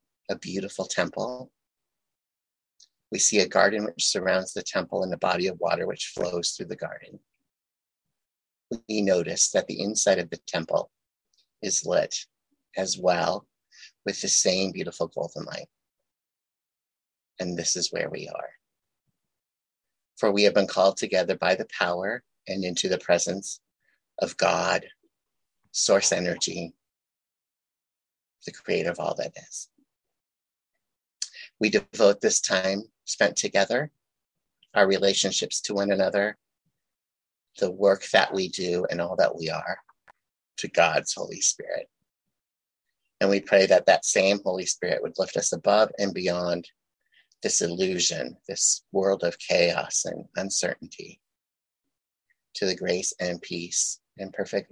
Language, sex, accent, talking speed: English, male, American, 135 wpm